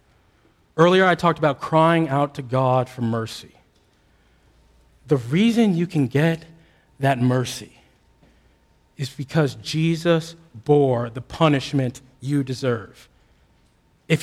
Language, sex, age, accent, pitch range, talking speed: English, male, 40-59, American, 135-205 Hz, 110 wpm